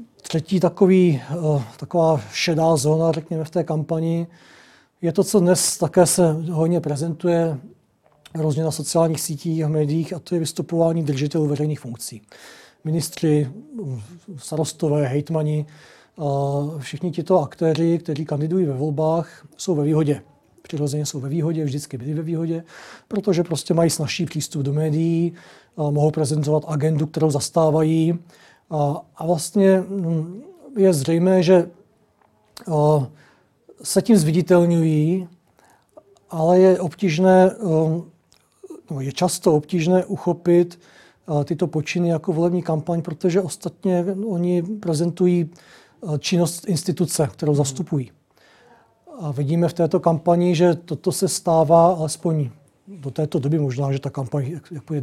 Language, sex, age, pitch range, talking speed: Czech, male, 40-59, 150-175 Hz, 120 wpm